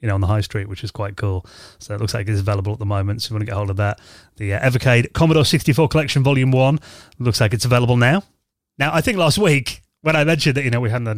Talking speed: 295 wpm